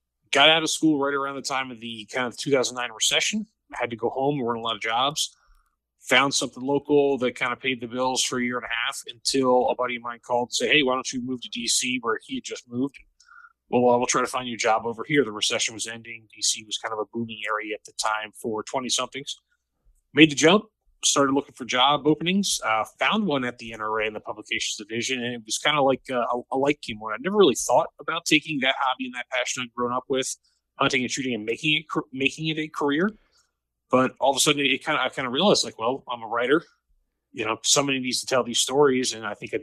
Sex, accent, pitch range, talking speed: male, American, 120-145 Hz, 255 wpm